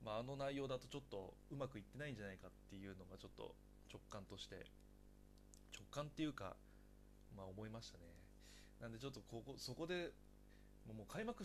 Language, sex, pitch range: Japanese, male, 100-145 Hz